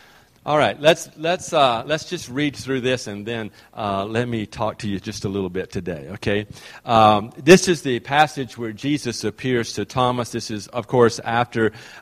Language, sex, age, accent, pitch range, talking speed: English, male, 50-69, American, 110-150 Hz, 195 wpm